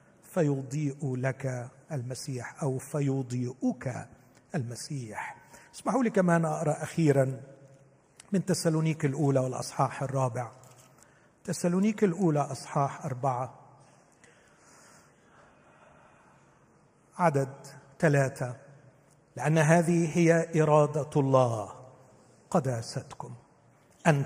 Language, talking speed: Arabic, 70 wpm